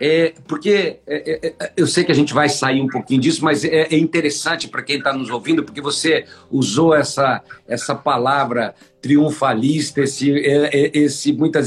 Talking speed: 175 wpm